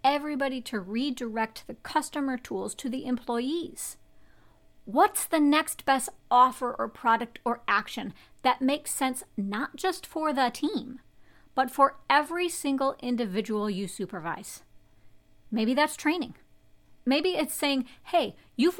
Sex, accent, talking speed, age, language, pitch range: female, American, 130 wpm, 40-59, English, 225-290 Hz